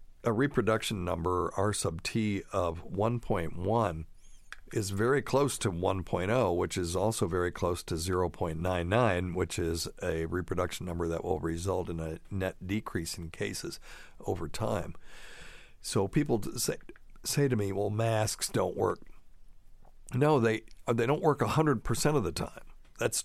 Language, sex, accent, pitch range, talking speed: English, male, American, 95-120 Hz, 145 wpm